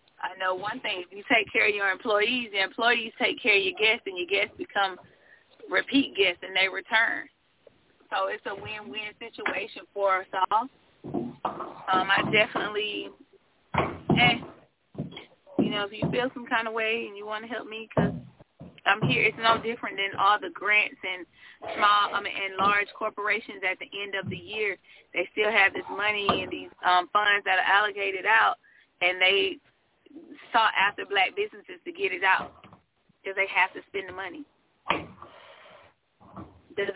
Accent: American